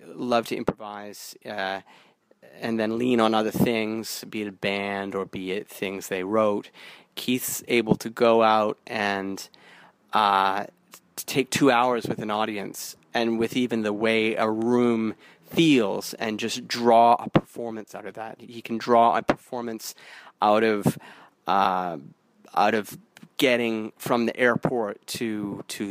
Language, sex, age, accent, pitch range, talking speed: English, male, 30-49, American, 105-120 Hz, 150 wpm